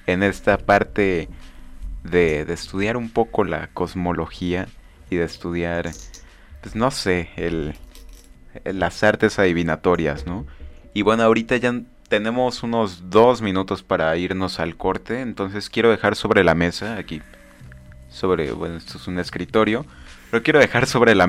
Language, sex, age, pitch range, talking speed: Spanish, male, 30-49, 80-105 Hz, 145 wpm